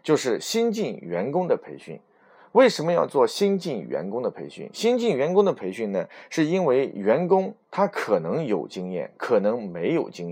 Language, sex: Chinese, male